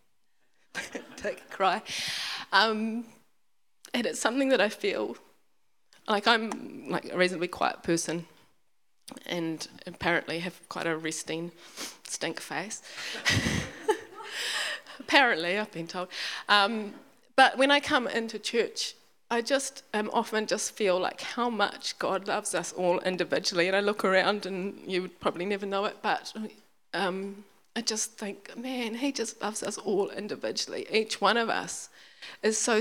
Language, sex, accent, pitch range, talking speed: English, female, British, 180-230 Hz, 145 wpm